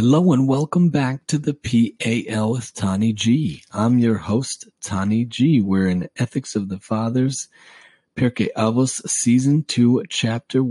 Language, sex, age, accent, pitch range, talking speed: English, male, 30-49, American, 100-125 Hz, 145 wpm